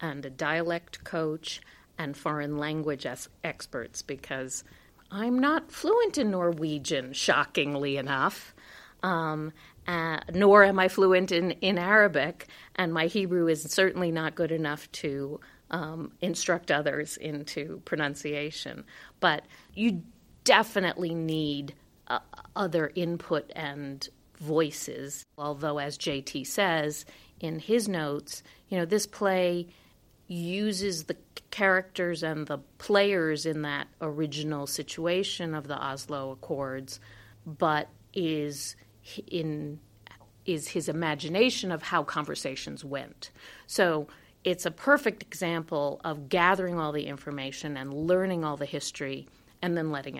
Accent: American